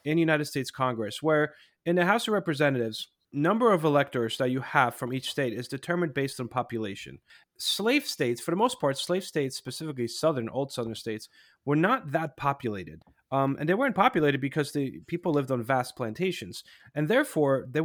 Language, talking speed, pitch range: English, 190 wpm, 125-170 Hz